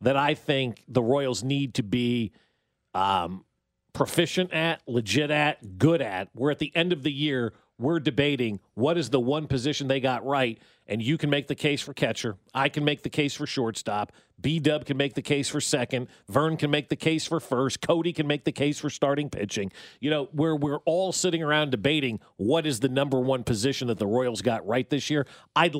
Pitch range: 130-160 Hz